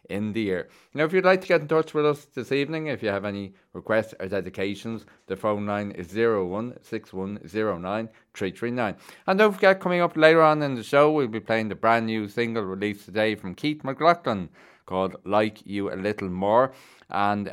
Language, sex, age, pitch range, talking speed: English, male, 30-49, 95-130 Hz, 190 wpm